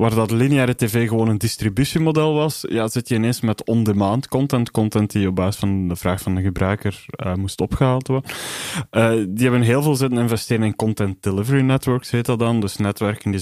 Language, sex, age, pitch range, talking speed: Dutch, male, 20-39, 105-125 Hz, 205 wpm